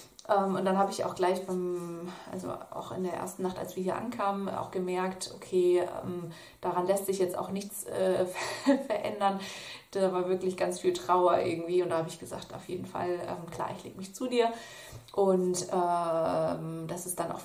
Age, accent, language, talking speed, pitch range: 30-49, German, German, 190 wpm, 180-200 Hz